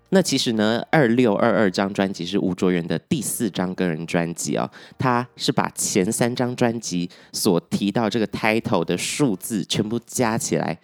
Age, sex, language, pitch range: 20-39, male, Chinese, 90-120 Hz